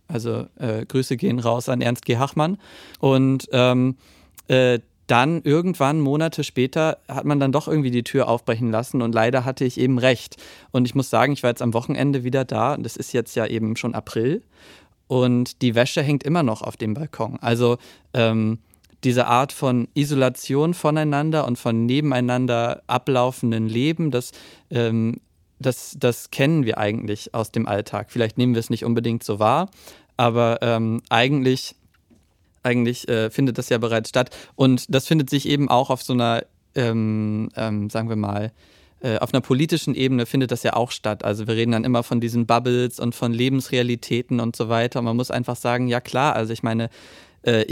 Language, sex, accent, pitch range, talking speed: German, male, German, 115-130 Hz, 185 wpm